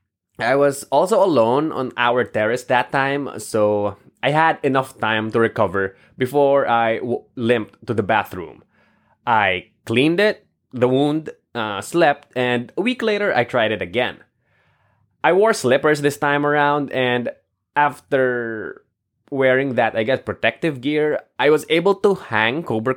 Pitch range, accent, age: 115-145 Hz, Filipino, 20-39